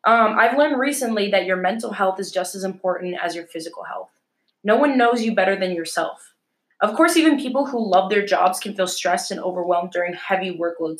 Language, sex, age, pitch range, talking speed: English, female, 20-39, 180-230 Hz, 215 wpm